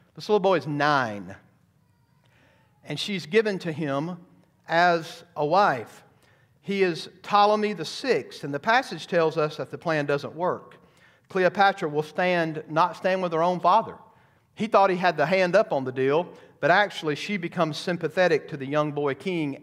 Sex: male